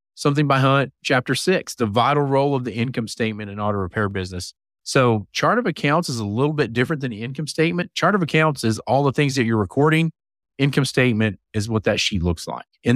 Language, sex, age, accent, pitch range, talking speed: English, male, 40-59, American, 105-130 Hz, 220 wpm